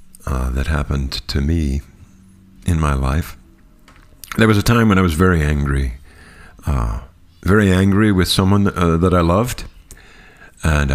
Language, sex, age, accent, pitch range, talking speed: English, male, 50-69, American, 80-105 Hz, 150 wpm